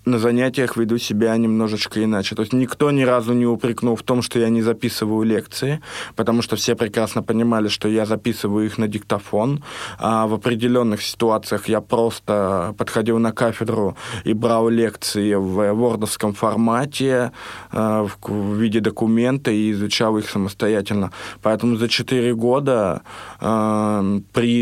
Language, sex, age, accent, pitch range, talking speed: Russian, male, 20-39, native, 105-120 Hz, 140 wpm